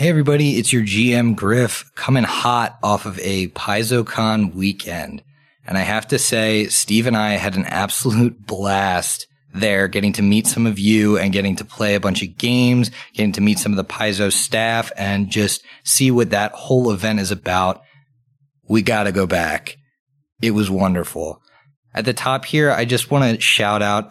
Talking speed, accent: 185 wpm, American